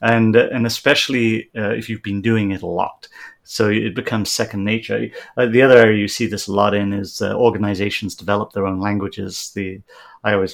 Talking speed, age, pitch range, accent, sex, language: 205 wpm, 40-59, 105-125 Hz, British, male, English